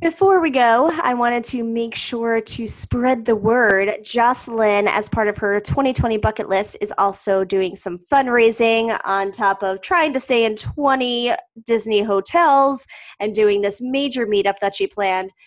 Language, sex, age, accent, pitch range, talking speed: English, female, 20-39, American, 200-250 Hz, 165 wpm